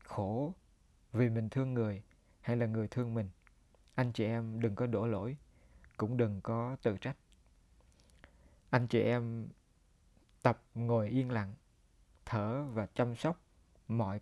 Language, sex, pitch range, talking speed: Vietnamese, male, 95-125 Hz, 145 wpm